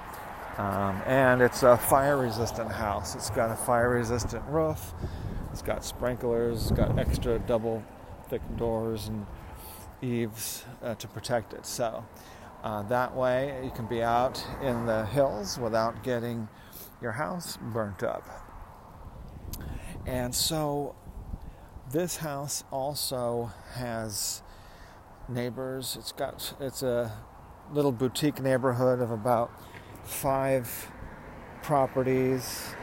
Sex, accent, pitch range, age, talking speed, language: male, American, 105-130 Hz, 40-59, 125 wpm, English